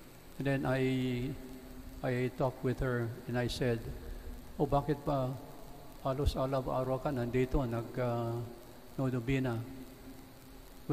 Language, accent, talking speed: English, Filipino, 105 wpm